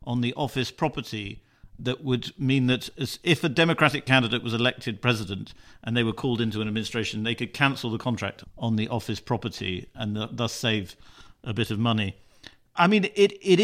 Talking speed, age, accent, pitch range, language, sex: 190 wpm, 50-69, British, 110-130 Hz, English, male